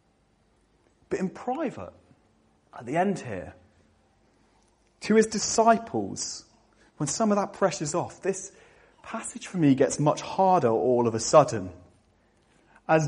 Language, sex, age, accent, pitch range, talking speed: English, male, 30-49, British, 110-175 Hz, 130 wpm